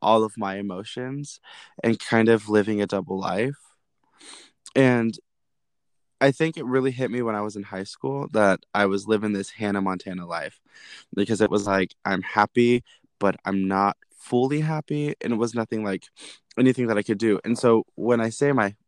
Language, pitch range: English, 95-115 Hz